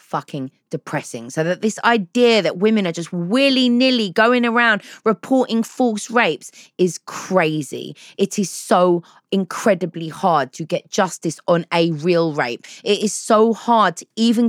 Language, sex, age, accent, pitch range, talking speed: English, female, 20-39, British, 160-225 Hz, 150 wpm